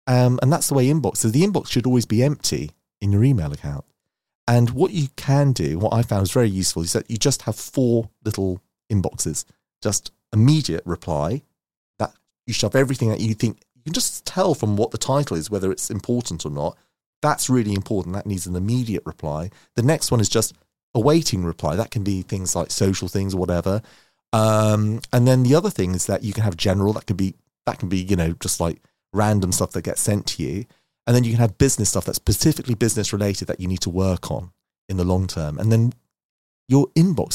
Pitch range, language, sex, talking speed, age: 90-120 Hz, English, male, 220 wpm, 30-49